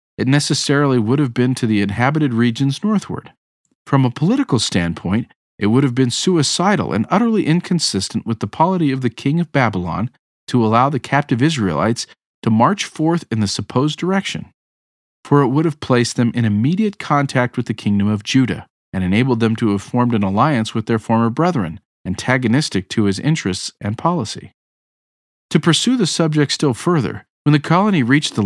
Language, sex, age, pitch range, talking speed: English, male, 40-59, 110-150 Hz, 180 wpm